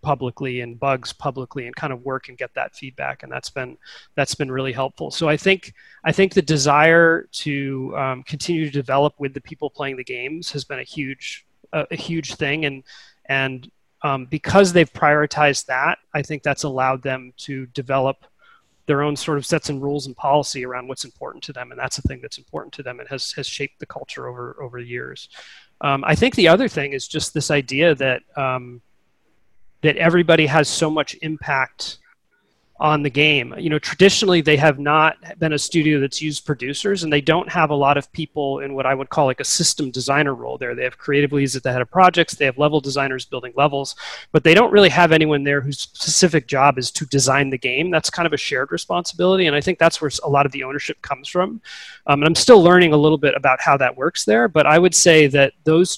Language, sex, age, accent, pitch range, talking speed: English, male, 30-49, American, 135-160 Hz, 225 wpm